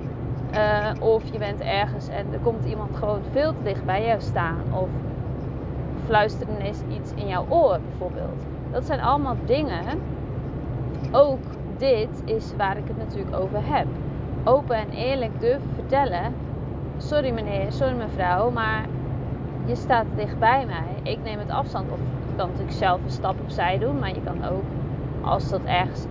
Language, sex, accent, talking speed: Dutch, female, Dutch, 165 wpm